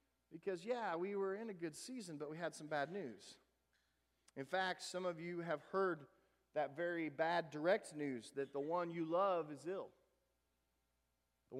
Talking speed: 175 wpm